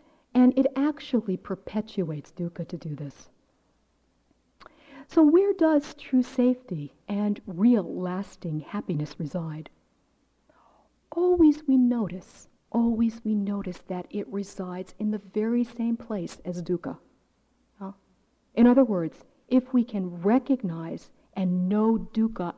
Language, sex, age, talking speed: English, female, 50-69, 120 wpm